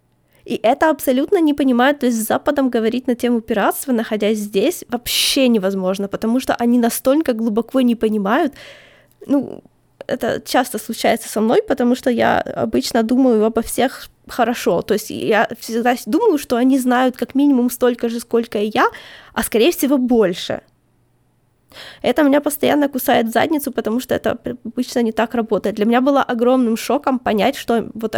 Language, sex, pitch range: Ukrainian, female, 225-280 Hz